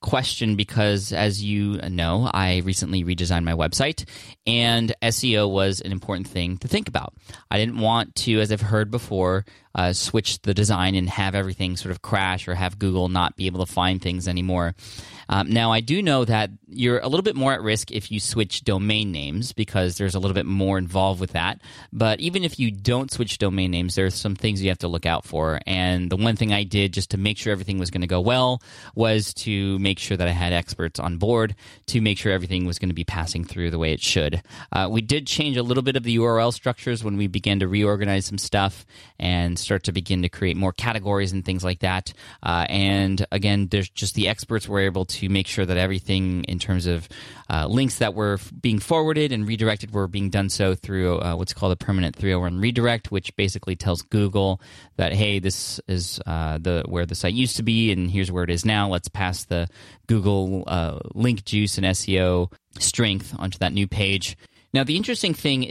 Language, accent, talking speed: English, American, 215 wpm